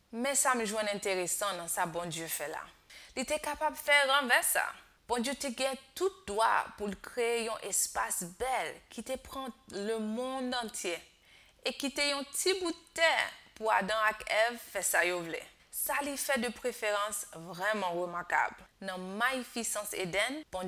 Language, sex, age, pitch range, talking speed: French, female, 20-39, 205-270 Hz, 175 wpm